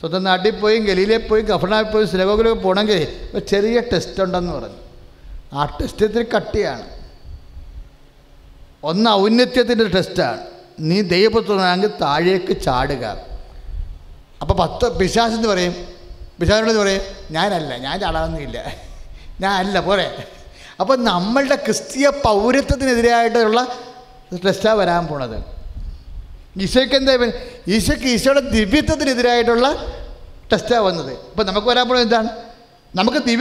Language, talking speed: English, 80 wpm